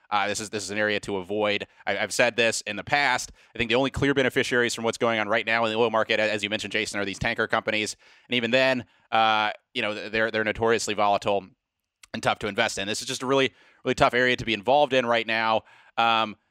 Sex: male